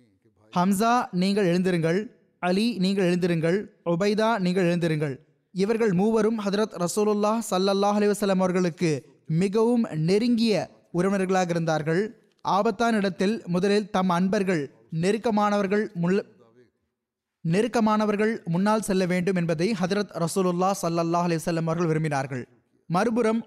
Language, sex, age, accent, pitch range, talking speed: Tamil, male, 20-39, native, 170-205 Hz, 90 wpm